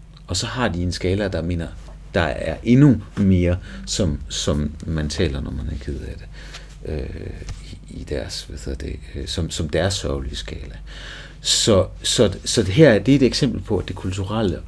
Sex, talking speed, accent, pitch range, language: male, 195 wpm, native, 75-95 Hz, Danish